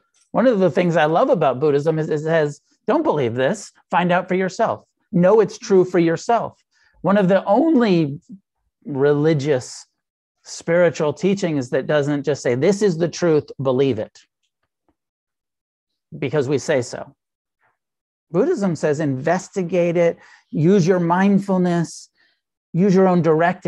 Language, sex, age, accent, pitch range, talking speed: English, male, 50-69, American, 145-190 Hz, 140 wpm